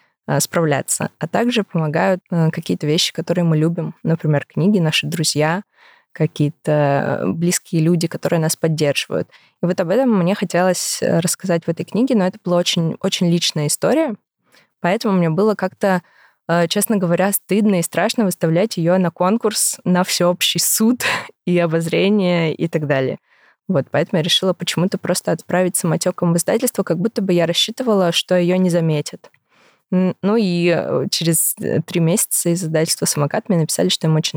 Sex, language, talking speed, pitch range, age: female, Russian, 155 wpm, 160-195 Hz, 20-39